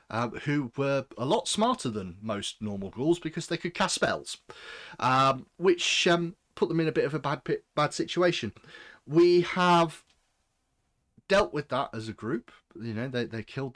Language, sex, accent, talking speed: English, male, British, 185 wpm